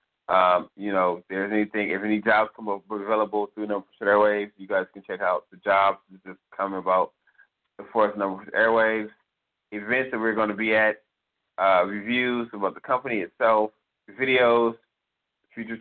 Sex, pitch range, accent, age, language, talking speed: male, 95-110 Hz, American, 30-49, English, 180 wpm